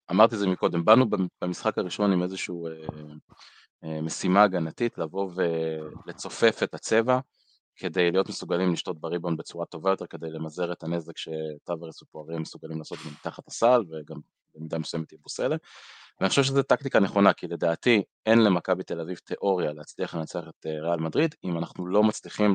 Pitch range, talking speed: 85-105 Hz, 160 wpm